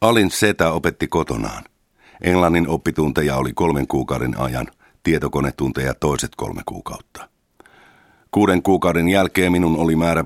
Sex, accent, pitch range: male, native, 70-85 Hz